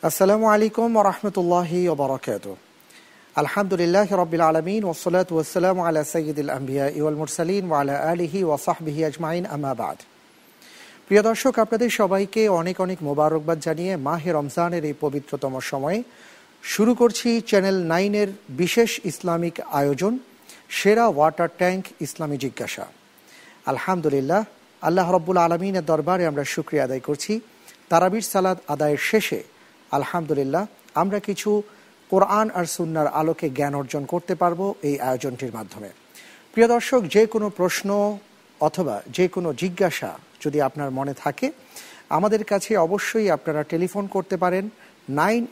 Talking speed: 115 wpm